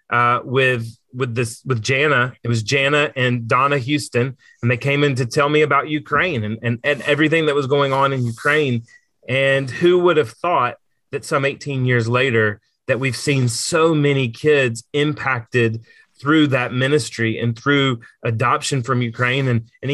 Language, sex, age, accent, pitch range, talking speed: English, male, 30-49, American, 120-145 Hz, 175 wpm